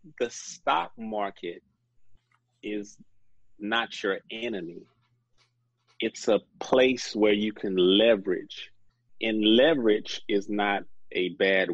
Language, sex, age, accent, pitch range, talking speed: English, male, 30-49, American, 100-120 Hz, 100 wpm